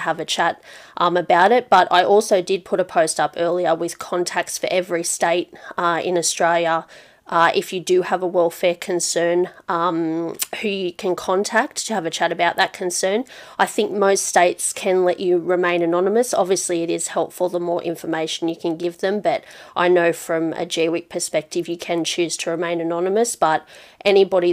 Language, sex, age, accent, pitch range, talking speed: English, female, 30-49, Australian, 170-185 Hz, 190 wpm